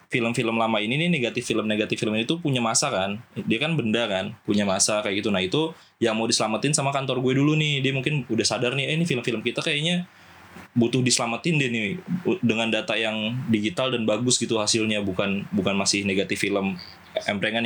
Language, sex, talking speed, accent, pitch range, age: Indonesian, male, 195 wpm, native, 110-135 Hz, 20-39